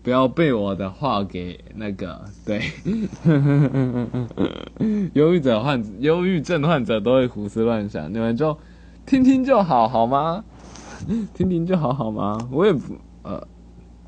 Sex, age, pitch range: male, 20-39, 90-125 Hz